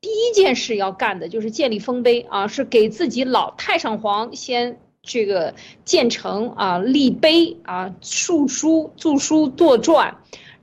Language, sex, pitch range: Chinese, female, 220-330 Hz